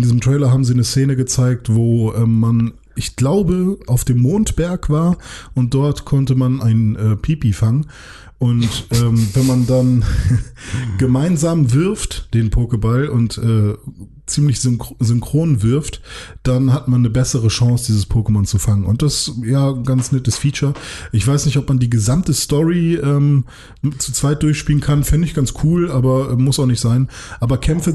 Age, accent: 20-39, German